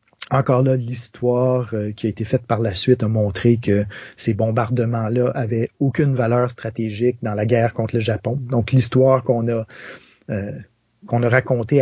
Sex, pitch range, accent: male, 115-135 Hz, Canadian